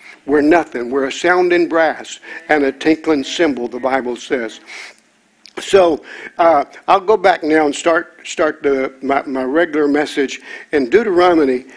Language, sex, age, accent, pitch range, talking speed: English, male, 60-79, American, 140-230 Hz, 150 wpm